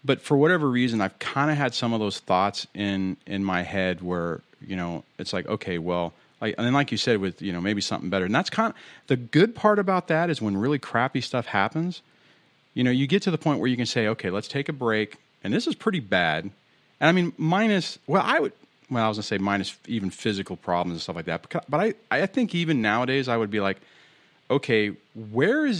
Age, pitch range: 40-59, 105-145 Hz